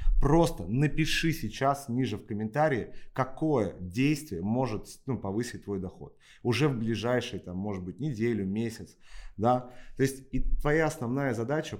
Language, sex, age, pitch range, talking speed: Russian, male, 30-49, 105-135 Hz, 130 wpm